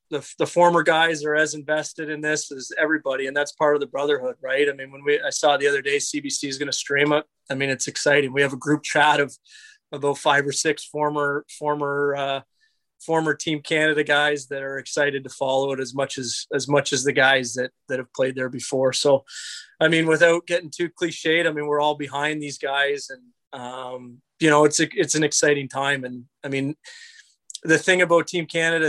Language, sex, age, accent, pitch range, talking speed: English, male, 30-49, American, 135-150 Hz, 220 wpm